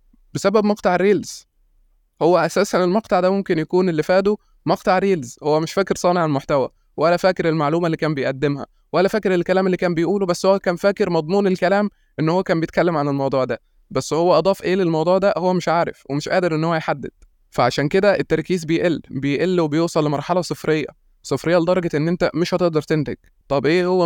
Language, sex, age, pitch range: Arabic, male, 20-39, 145-180 Hz